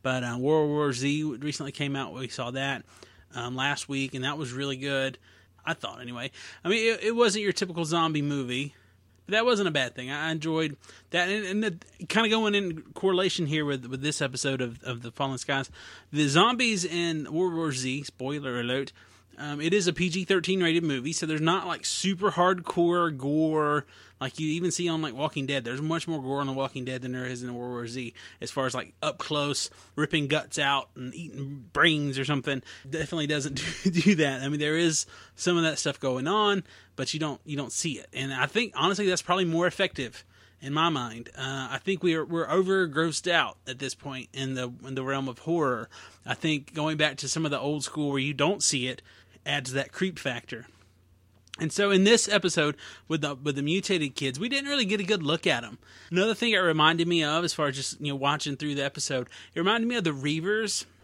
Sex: male